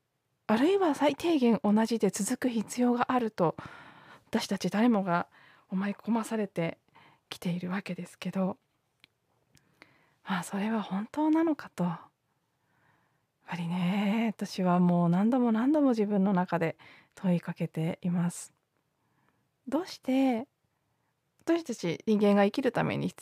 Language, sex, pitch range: Japanese, female, 170-230 Hz